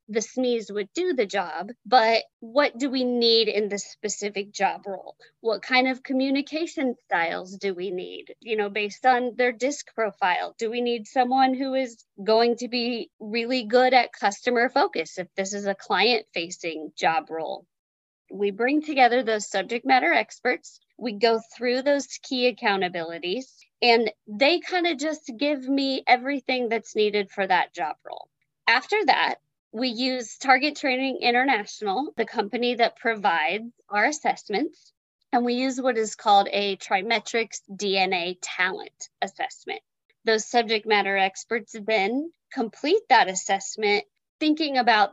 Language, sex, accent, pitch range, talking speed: English, female, American, 205-255 Hz, 150 wpm